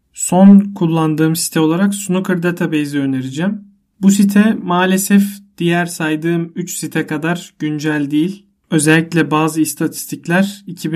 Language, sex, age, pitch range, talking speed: Turkish, male, 40-59, 155-185 Hz, 105 wpm